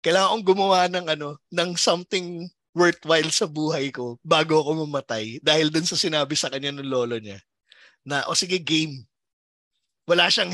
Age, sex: 20-39, male